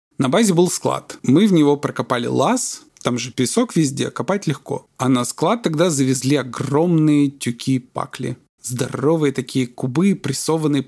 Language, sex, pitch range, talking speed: Russian, male, 130-170 Hz, 150 wpm